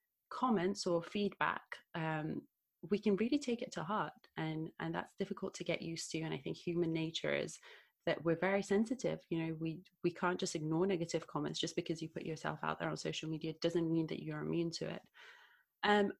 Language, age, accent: English, 30-49, British